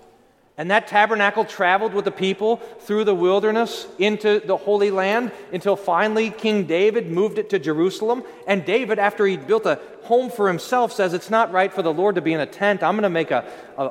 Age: 40-59